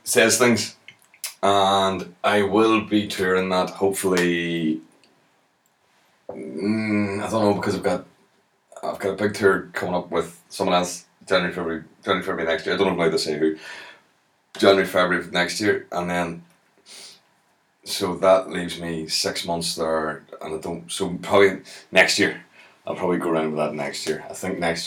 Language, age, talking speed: English, 30-49, 175 wpm